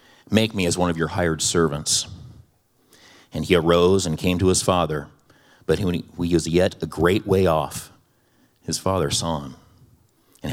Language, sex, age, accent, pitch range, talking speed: English, male, 40-59, American, 80-95 Hz, 165 wpm